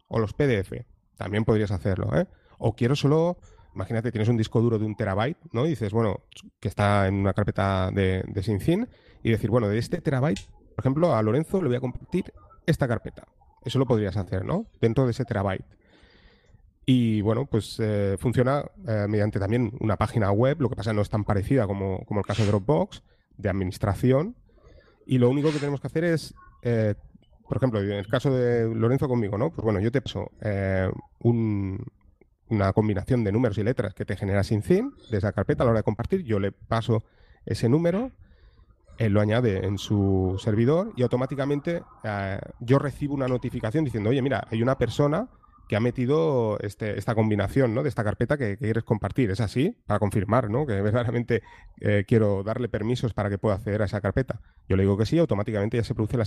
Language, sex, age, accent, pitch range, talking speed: Spanish, male, 30-49, Spanish, 105-130 Hz, 205 wpm